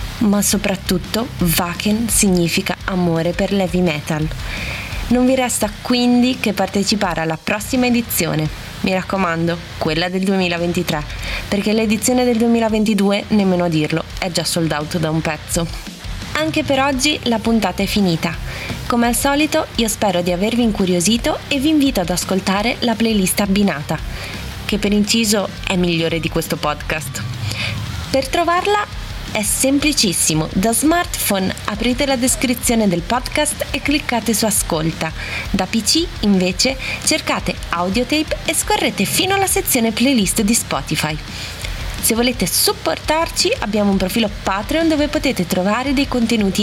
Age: 20-39